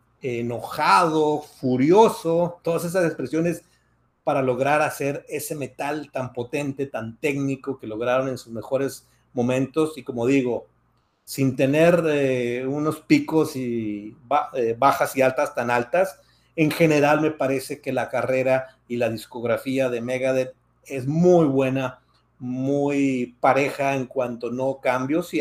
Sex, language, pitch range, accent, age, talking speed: male, Spanish, 125-150 Hz, Mexican, 40-59, 135 wpm